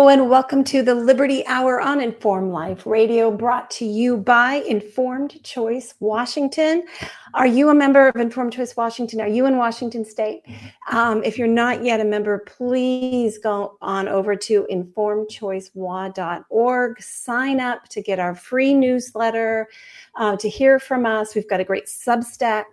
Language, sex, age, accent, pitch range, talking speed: English, female, 40-59, American, 205-245 Hz, 160 wpm